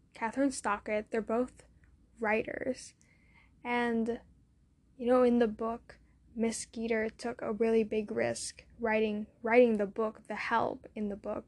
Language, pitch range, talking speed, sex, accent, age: English, 215-240 Hz, 140 wpm, female, American, 10-29